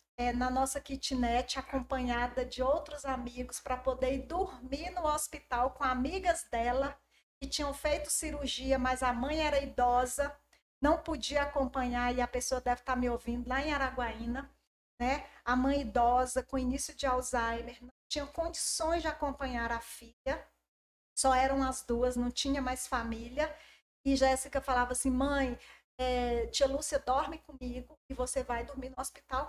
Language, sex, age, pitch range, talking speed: Portuguese, female, 40-59, 245-280 Hz, 160 wpm